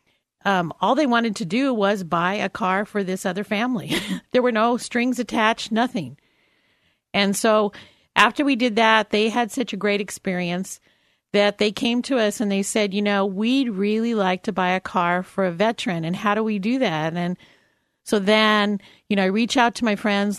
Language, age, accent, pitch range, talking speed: English, 50-69, American, 190-225 Hz, 205 wpm